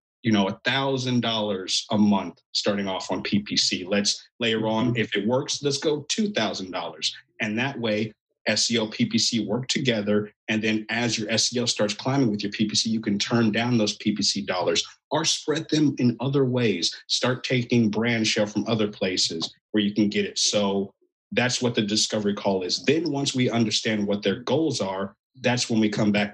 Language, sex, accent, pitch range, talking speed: English, male, American, 105-125 Hz, 180 wpm